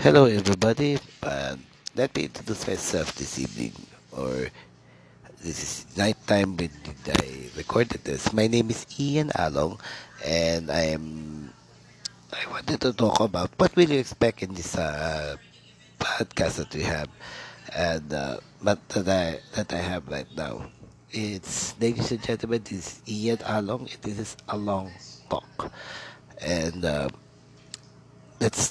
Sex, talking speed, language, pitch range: male, 150 wpm, English, 75-110 Hz